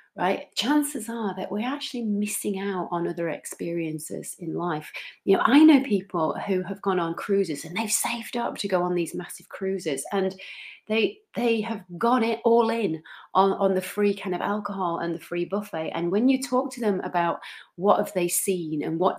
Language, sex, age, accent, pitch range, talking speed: English, female, 30-49, British, 180-230 Hz, 205 wpm